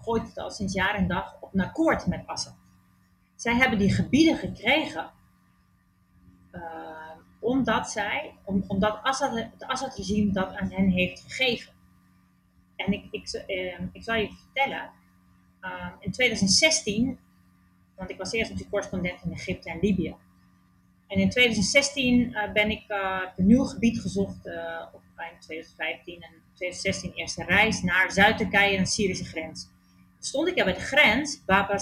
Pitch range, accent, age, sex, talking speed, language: 160-210 Hz, Dutch, 30-49, female, 160 wpm, Dutch